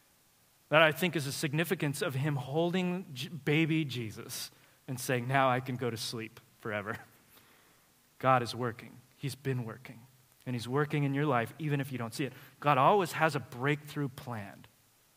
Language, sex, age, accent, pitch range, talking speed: English, male, 30-49, American, 125-155 Hz, 175 wpm